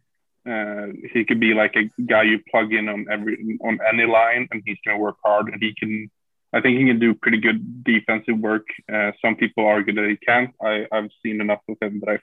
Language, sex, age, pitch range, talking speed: English, male, 20-39, 105-115 Hz, 230 wpm